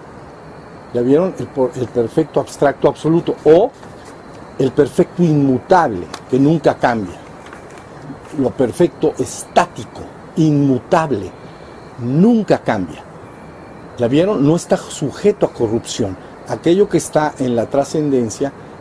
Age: 50-69